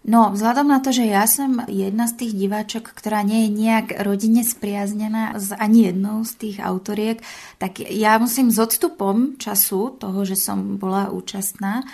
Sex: female